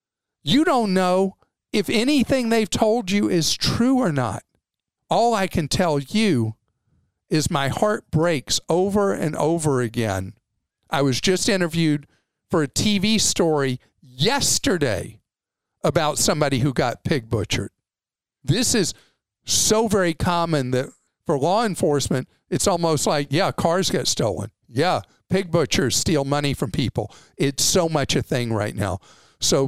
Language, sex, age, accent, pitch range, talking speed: English, male, 50-69, American, 130-180 Hz, 145 wpm